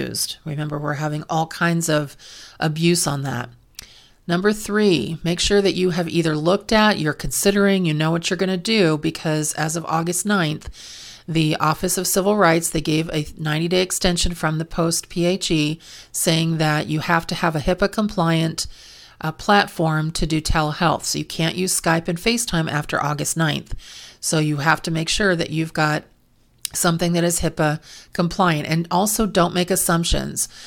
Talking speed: 175 wpm